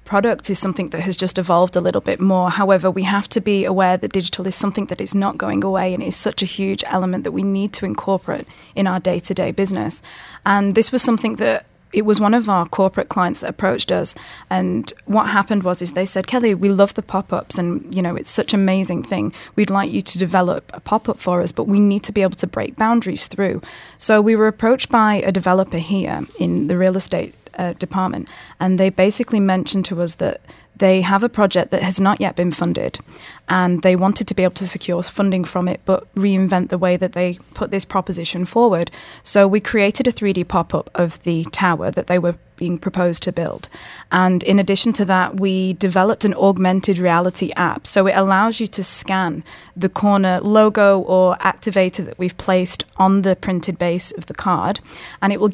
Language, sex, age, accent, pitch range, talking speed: English, female, 20-39, British, 180-200 Hz, 215 wpm